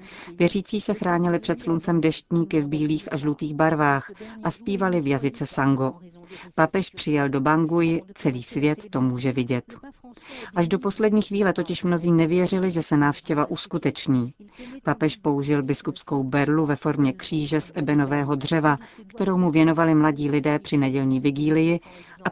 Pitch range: 145-170 Hz